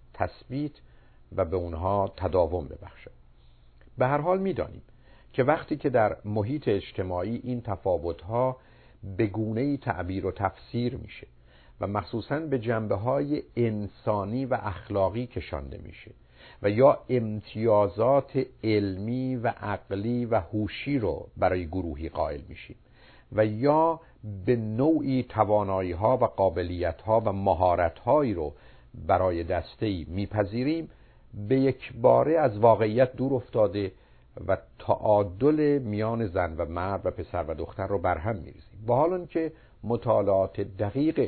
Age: 50-69